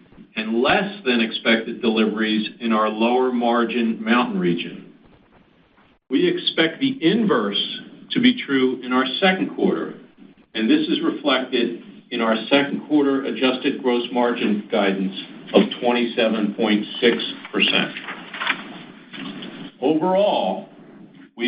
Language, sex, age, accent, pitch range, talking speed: English, male, 50-69, American, 110-140 Hz, 105 wpm